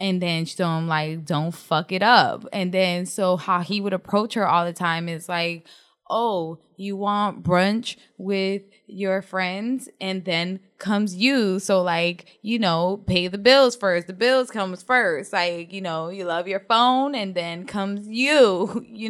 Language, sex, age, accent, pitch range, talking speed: English, female, 10-29, American, 180-215 Hz, 185 wpm